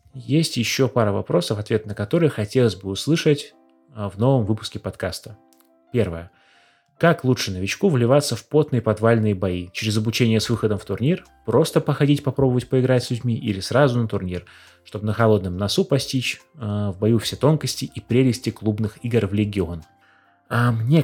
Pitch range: 105-130 Hz